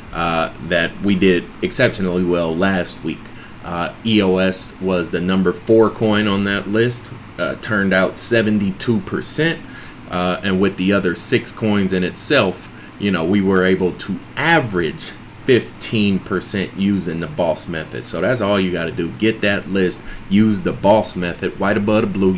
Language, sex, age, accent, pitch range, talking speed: English, male, 30-49, American, 90-105 Hz, 165 wpm